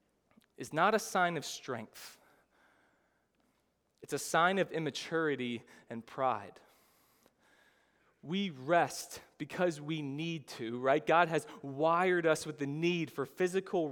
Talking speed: 125 wpm